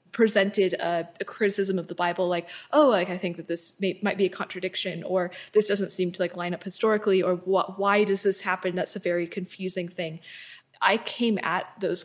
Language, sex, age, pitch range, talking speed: English, female, 20-39, 180-215 Hz, 210 wpm